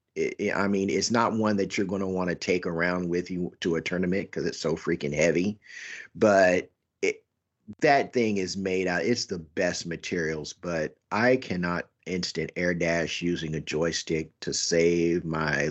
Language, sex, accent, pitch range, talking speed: English, male, American, 90-130 Hz, 175 wpm